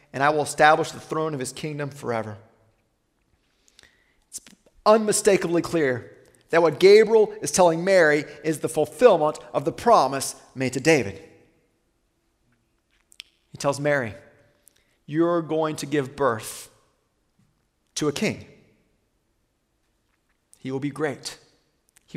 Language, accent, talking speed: English, American, 120 wpm